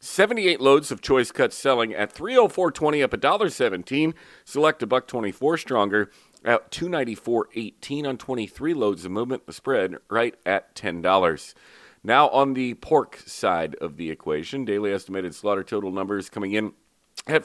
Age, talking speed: 40-59, 165 wpm